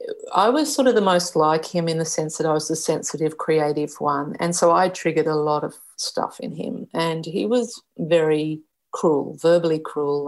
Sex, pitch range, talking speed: female, 155-175 Hz, 205 wpm